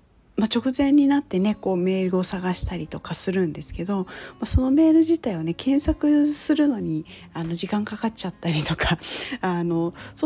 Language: Japanese